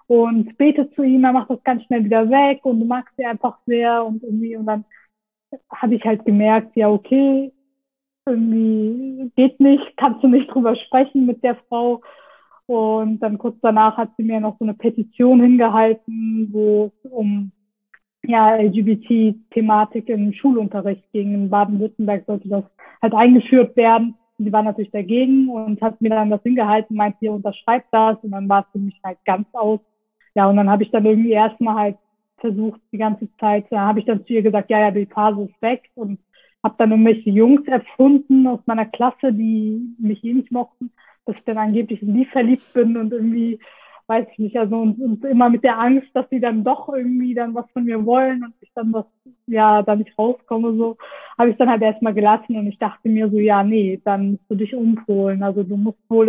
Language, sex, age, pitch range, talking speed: German, female, 20-39, 215-250 Hz, 200 wpm